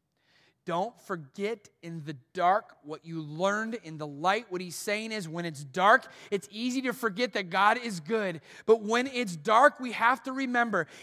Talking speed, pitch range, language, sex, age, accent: 185 wpm, 160-250 Hz, English, male, 30-49, American